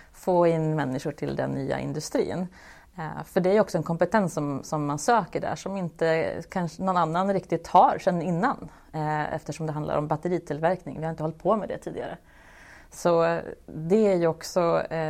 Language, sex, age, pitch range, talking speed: Swedish, female, 30-49, 155-185 Hz, 180 wpm